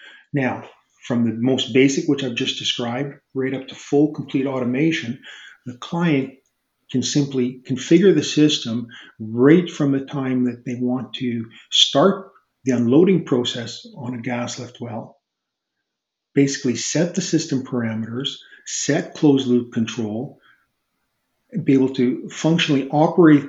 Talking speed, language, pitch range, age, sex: 135 wpm, English, 125-145 Hz, 40-59, male